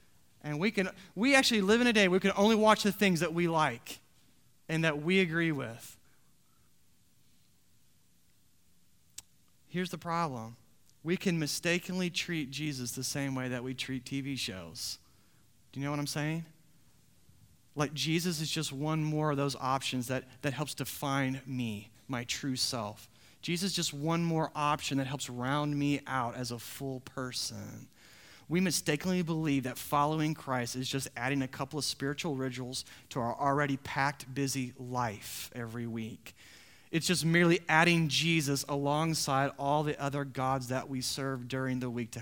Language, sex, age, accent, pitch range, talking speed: English, male, 30-49, American, 125-160 Hz, 165 wpm